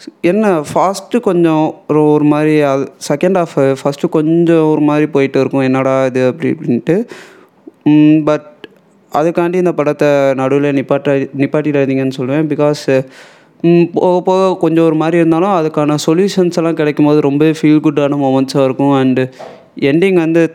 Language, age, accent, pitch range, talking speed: Tamil, 20-39, native, 140-170 Hz, 135 wpm